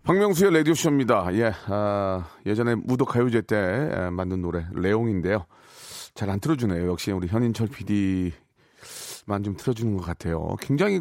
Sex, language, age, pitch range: male, Korean, 40-59, 95-135 Hz